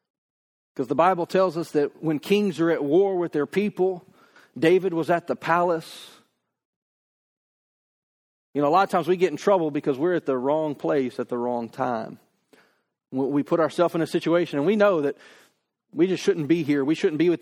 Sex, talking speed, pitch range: male, 200 wpm, 155-195 Hz